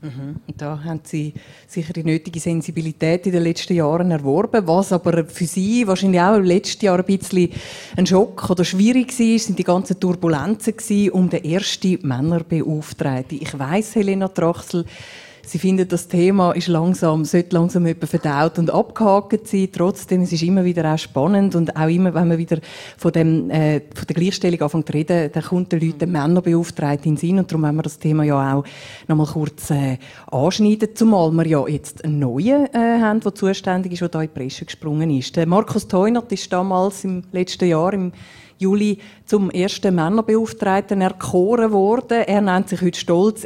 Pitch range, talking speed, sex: 160-195 Hz, 180 wpm, female